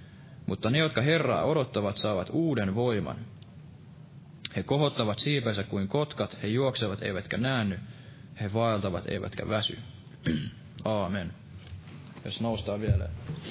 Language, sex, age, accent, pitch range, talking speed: Finnish, male, 20-39, native, 110-135 Hz, 110 wpm